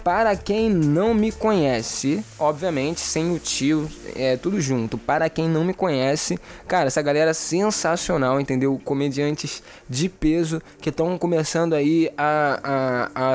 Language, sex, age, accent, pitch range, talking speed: Portuguese, male, 20-39, Brazilian, 135-180 Hz, 140 wpm